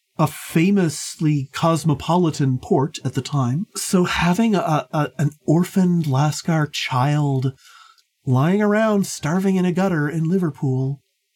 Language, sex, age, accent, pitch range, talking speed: English, male, 40-59, American, 150-200 Hz, 120 wpm